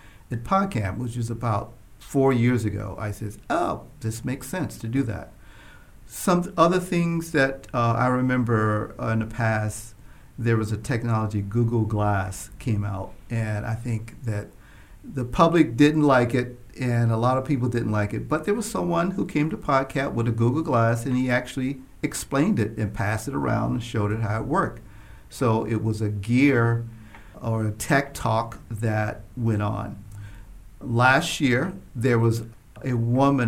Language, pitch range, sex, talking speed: English, 110-130 Hz, male, 175 wpm